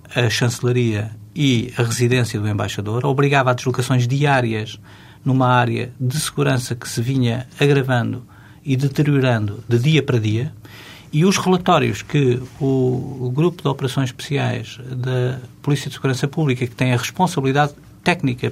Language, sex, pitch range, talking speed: Portuguese, male, 120-150 Hz, 145 wpm